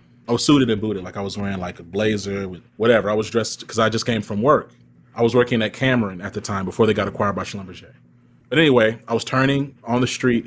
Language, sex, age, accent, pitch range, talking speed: English, male, 30-49, American, 100-120 Hz, 260 wpm